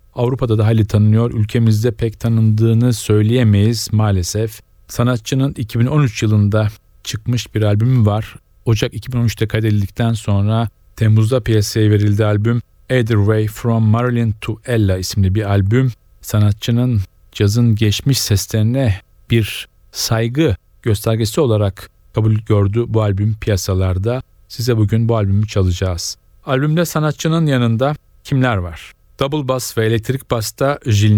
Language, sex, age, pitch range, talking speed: Turkish, male, 40-59, 105-125 Hz, 120 wpm